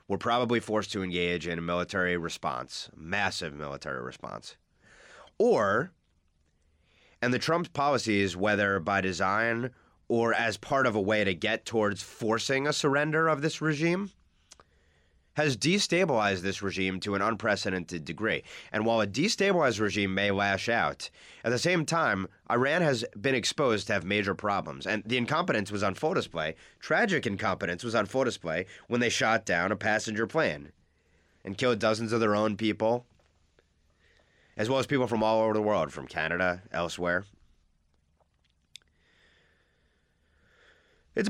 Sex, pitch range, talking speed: male, 90-115 Hz, 150 wpm